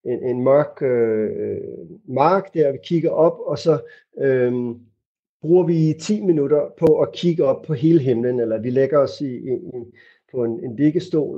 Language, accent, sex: Danish, native, male